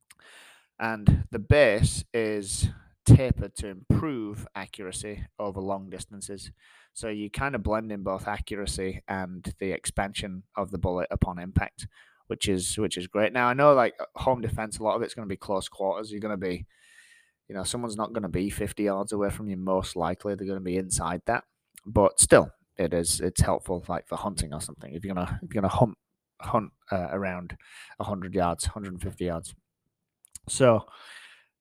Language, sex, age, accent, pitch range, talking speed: English, male, 20-39, British, 95-110 Hz, 190 wpm